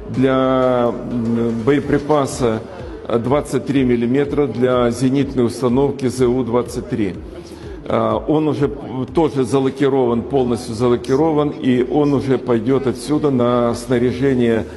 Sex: male